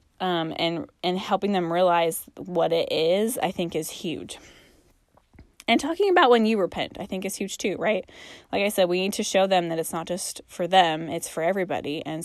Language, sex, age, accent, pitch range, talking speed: English, female, 20-39, American, 165-205 Hz, 210 wpm